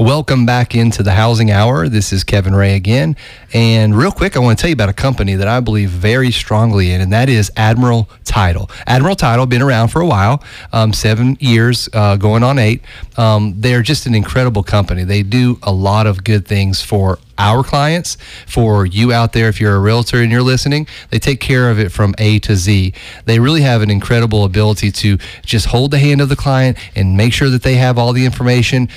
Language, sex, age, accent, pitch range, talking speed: English, male, 30-49, American, 105-125 Hz, 220 wpm